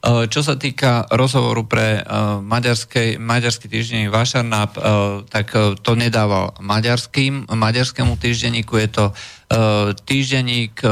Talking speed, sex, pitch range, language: 95 wpm, male, 100-115 Hz, Slovak